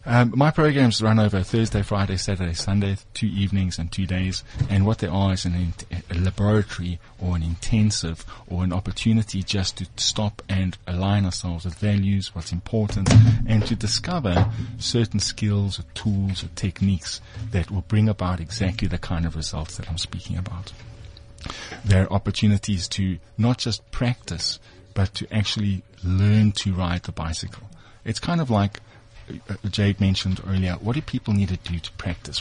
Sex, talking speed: male, 165 wpm